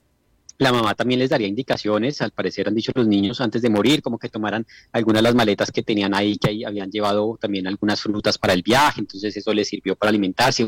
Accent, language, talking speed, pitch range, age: Colombian, Spanish, 230 wpm, 105-130 Hz, 30-49